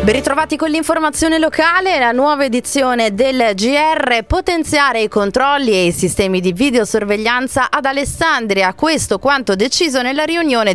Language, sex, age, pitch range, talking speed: Italian, female, 20-39, 190-255 Hz, 140 wpm